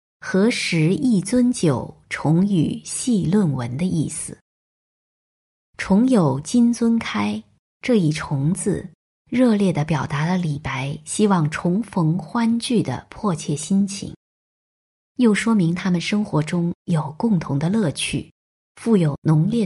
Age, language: 20-39, Chinese